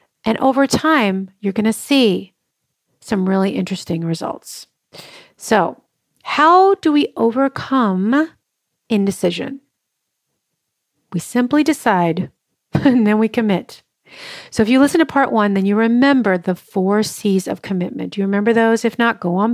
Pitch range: 190-230 Hz